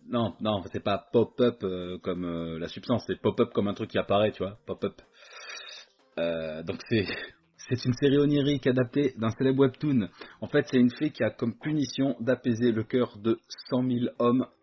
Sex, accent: male, French